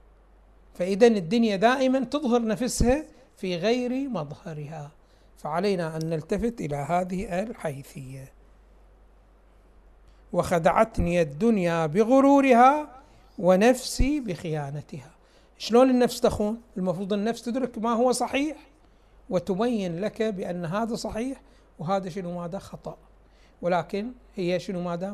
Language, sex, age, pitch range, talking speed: Arabic, male, 60-79, 175-245 Hz, 100 wpm